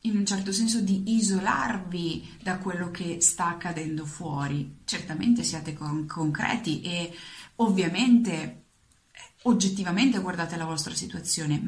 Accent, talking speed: native, 115 wpm